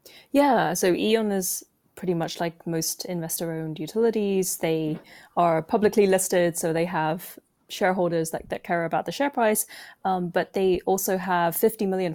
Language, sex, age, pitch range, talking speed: English, female, 20-39, 160-180 Hz, 165 wpm